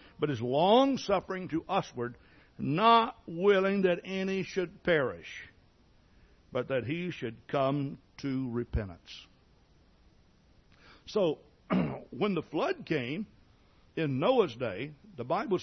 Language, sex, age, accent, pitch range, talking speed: English, male, 60-79, American, 135-205 Hz, 110 wpm